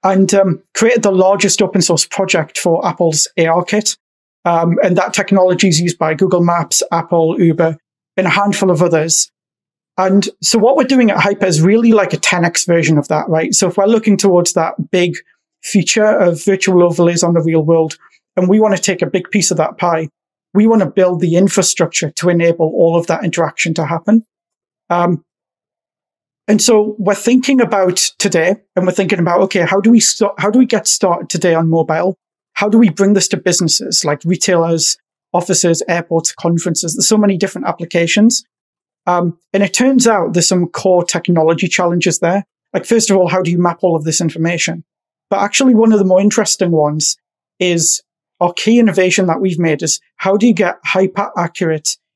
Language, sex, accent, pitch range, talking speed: English, male, British, 170-200 Hz, 195 wpm